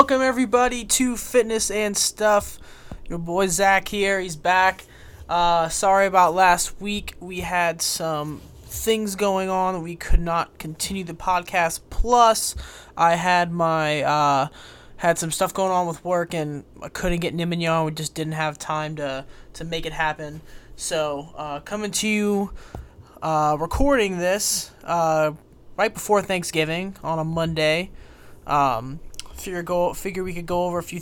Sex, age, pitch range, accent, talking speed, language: male, 20-39, 150-180 Hz, American, 155 wpm, English